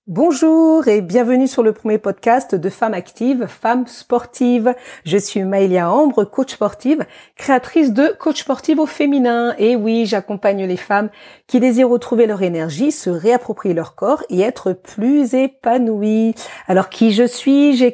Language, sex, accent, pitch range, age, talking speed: French, female, French, 205-260 Hz, 40-59, 155 wpm